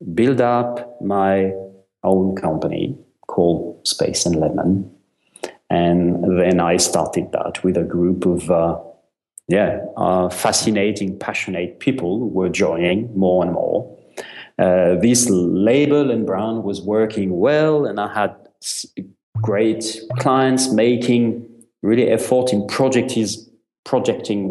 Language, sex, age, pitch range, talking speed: English, male, 40-59, 90-120 Hz, 120 wpm